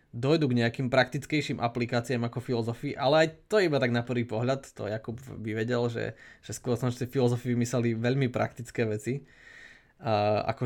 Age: 20-39